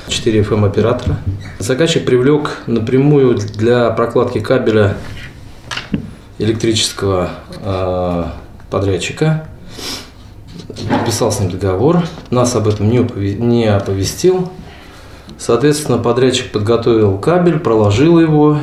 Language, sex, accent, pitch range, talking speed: Russian, male, native, 100-130 Hz, 85 wpm